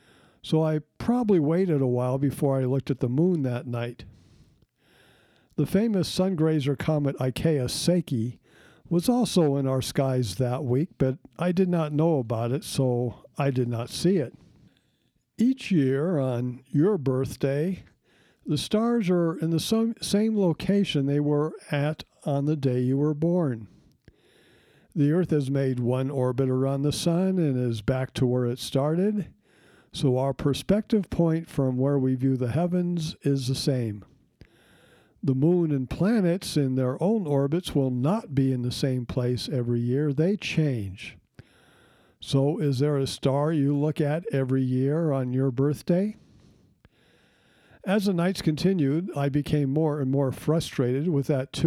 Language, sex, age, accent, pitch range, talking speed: English, male, 60-79, American, 130-165 Hz, 160 wpm